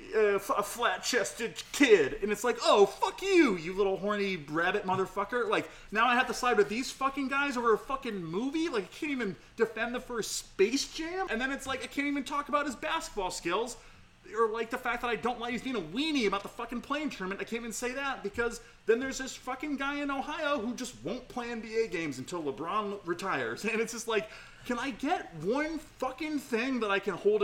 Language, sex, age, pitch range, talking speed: English, male, 30-49, 200-270 Hz, 225 wpm